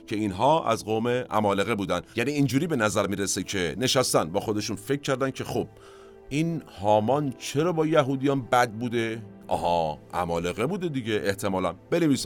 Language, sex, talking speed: Persian, male, 155 wpm